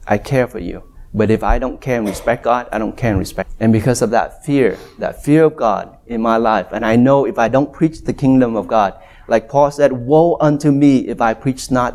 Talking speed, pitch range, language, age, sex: 250 wpm, 120-175 Hz, English, 30-49, male